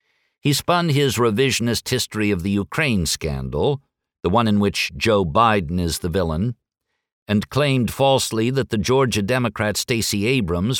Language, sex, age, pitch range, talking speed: English, male, 50-69, 85-120 Hz, 150 wpm